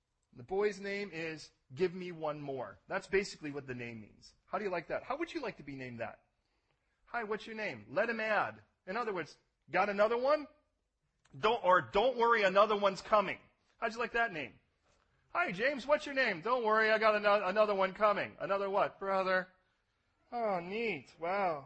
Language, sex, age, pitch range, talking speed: English, male, 40-59, 125-195 Hz, 195 wpm